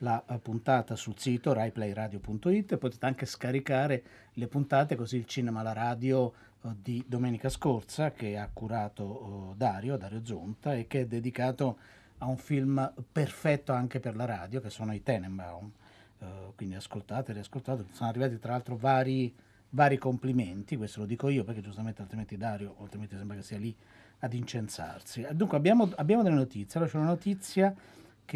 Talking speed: 165 wpm